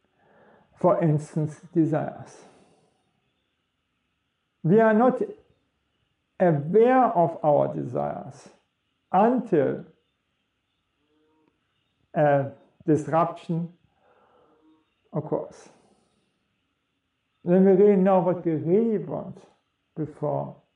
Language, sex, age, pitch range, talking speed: English, male, 50-69, 140-185 Hz, 65 wpm